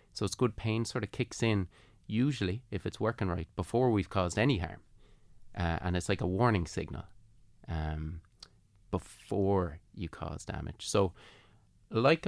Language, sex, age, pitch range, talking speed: English, male, 30-49, 90-110 Hz, 155 wpm